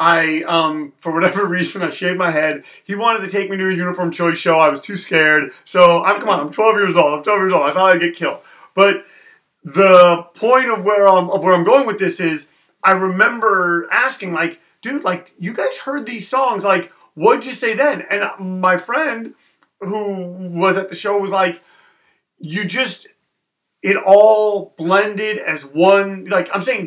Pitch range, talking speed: 180-220 Hz, 200 wpm